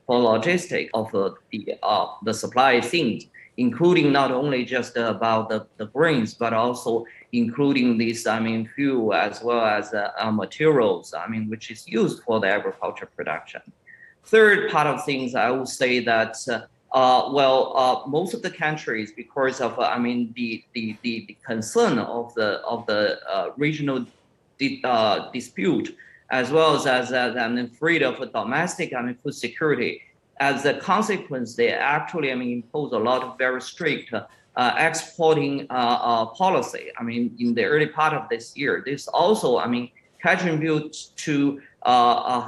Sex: male